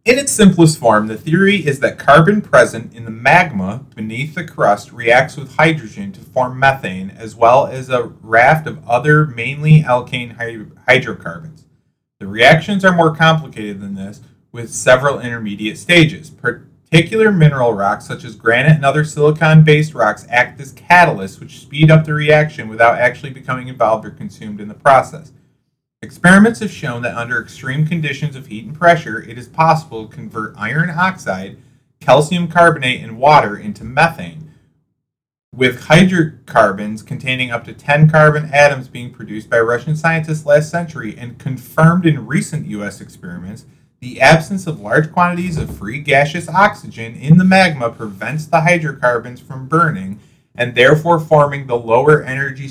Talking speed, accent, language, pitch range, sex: 155 wpm, American, English, 120-160 Hz, male